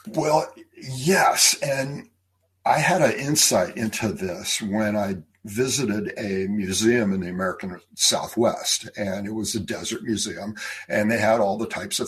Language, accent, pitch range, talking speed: English, American, 105-120 Hz, 155 wpm